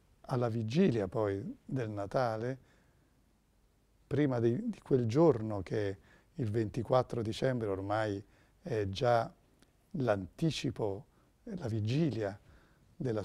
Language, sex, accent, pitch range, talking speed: Italian, male, native, 105-135 Hz, 95 wpm